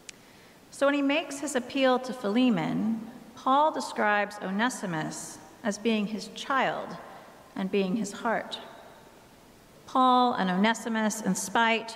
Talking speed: 120 wpm